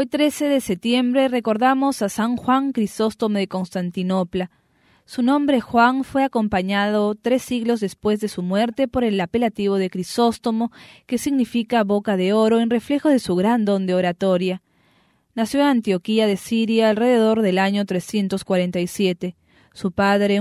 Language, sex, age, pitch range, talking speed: English, female, 20-39, 190-240 Hz, 150 wpm